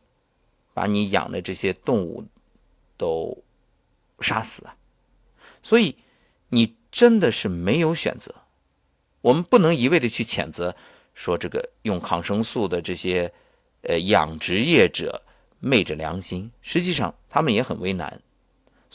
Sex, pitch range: male, 90-130 Hz